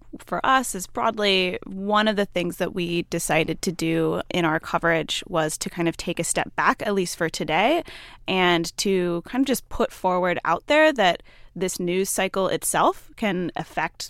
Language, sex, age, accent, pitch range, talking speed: English, female, 20-39, American, 165-205 Hz, 185 wpm